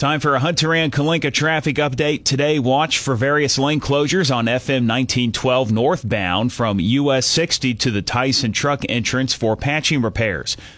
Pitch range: 115-140 Hz